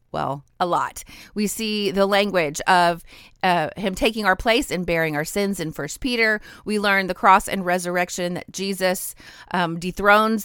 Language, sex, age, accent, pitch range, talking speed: English, female, 30-49, American, 180-210 Hz, 170 wpm